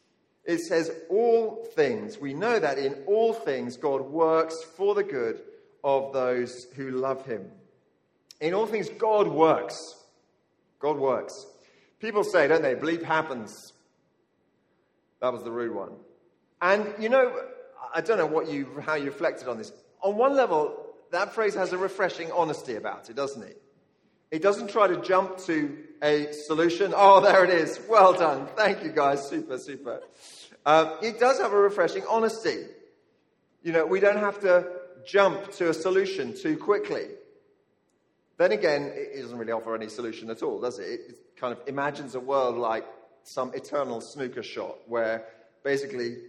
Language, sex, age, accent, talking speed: English, male, 40-59, British, 165 wpm